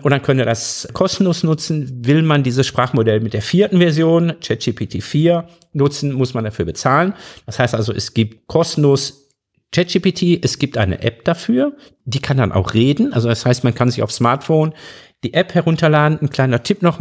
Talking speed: 190 wpm